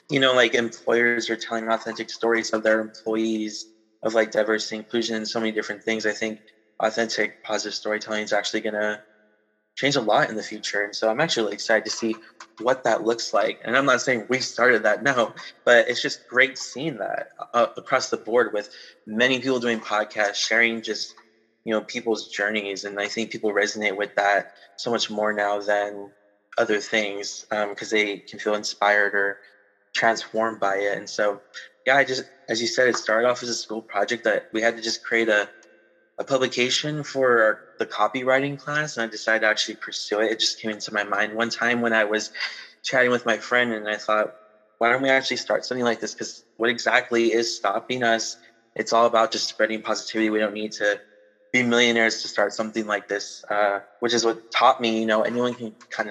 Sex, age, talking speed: male, 20-39, 205 wpm